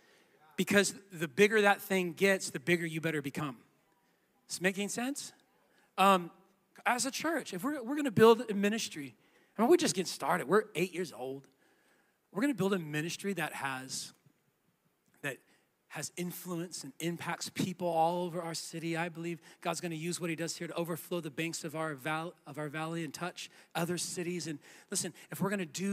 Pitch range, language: 170-200 Hz, English